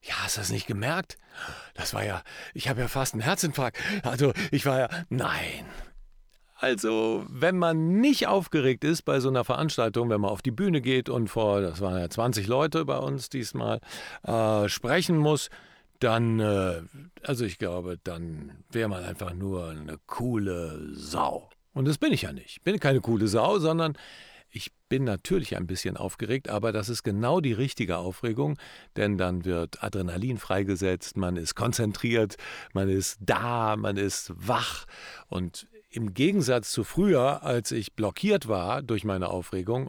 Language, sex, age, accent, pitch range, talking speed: German, male, 50-69, German, 95-135 Hz, 165 wpm